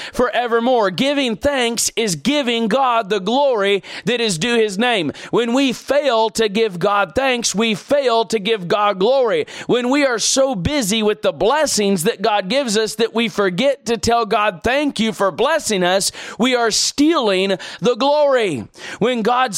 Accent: American